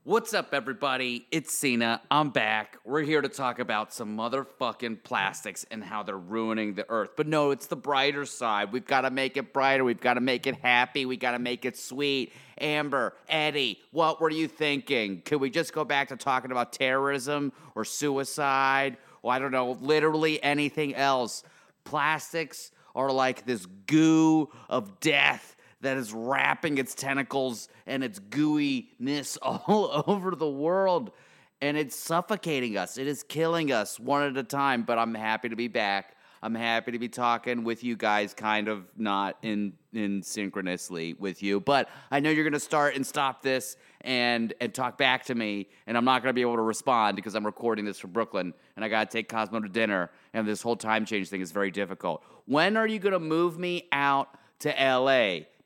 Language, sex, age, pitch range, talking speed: English, male, 30-49, 115-145 Hz, 195 wpm